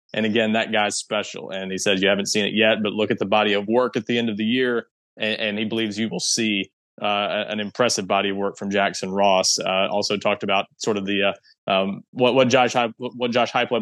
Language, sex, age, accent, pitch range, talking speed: English, male, 20-39, American, 105-120 Hz, 255 wpm